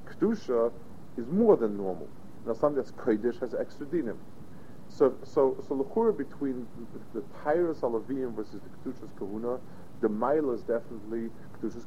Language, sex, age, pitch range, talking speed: English, male, 50-69, 100-135 Hz, 135 wpm